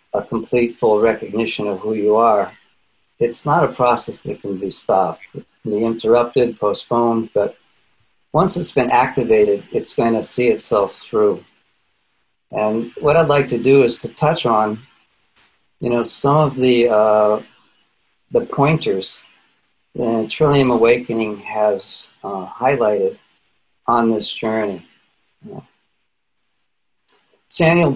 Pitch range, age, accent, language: 110-135 Hz, 40-59, American, English